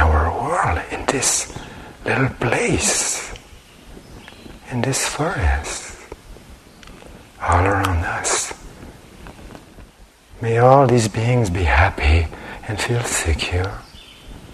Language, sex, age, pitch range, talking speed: English, male, 60-79, 85-120 Hz, 75 wpm